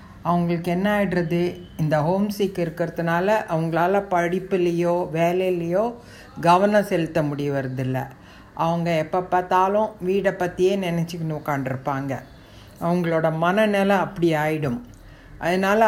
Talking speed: 100 wpm